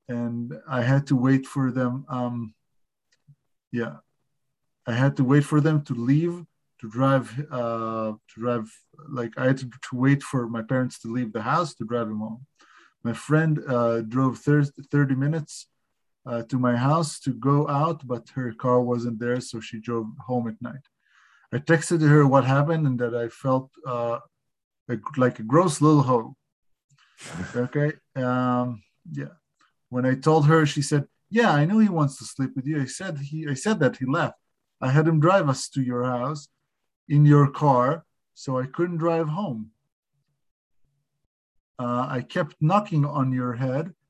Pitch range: 125-150 Hz